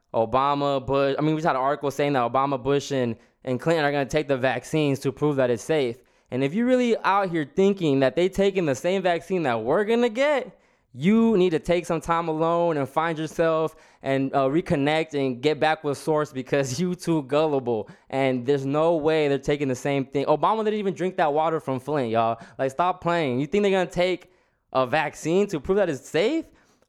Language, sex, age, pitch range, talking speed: English, male, 20-39, 135-170 Hz, 225 wpm